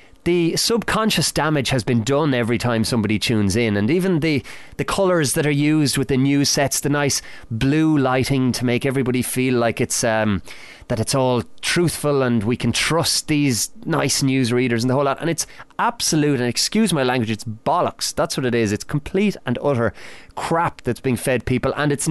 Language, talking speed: English, 200 wpm